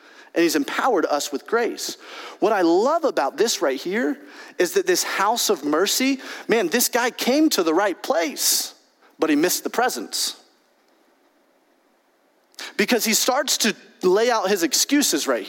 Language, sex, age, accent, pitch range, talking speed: English, male, 30-49, American, 225-345 Hz, 160 wpm